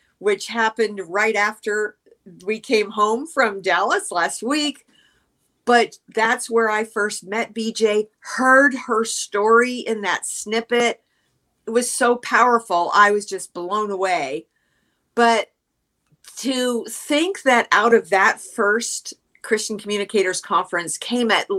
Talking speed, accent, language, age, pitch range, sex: 130 wpm, American, English, 50-69, 200-235 Hz, female